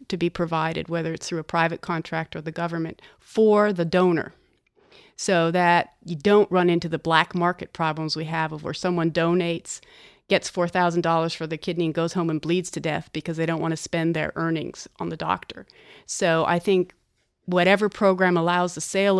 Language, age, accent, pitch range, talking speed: English, 30-49, American, 165-195 Hz, 195 wpm